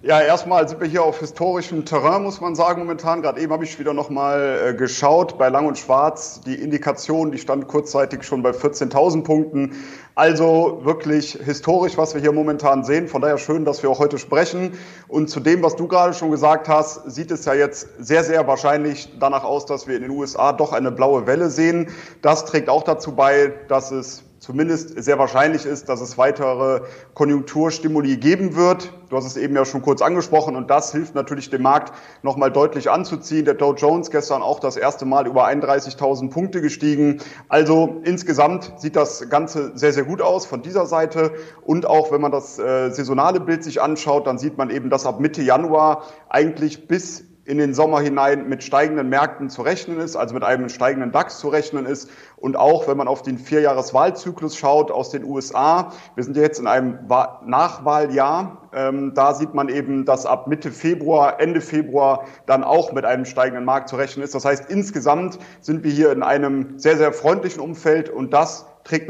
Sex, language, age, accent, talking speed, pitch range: male, German, 30-49, German, 195 wpm, 135-160 Hz